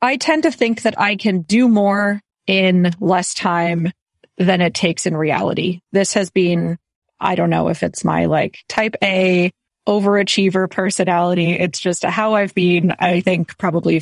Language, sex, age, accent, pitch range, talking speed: English, female, 30-49, American, 175-205 Hz, 165 wpm